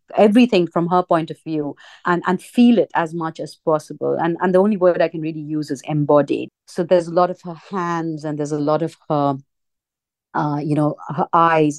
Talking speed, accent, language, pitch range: 220 wpm, Indian, English, 155-190 Hz